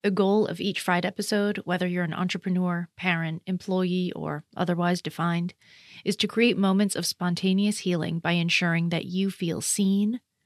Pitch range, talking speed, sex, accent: 170-200 Hz, 160 wpm, female, American